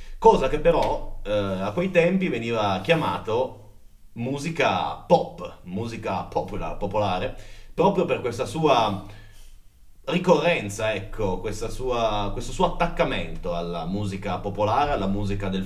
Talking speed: 115 wpm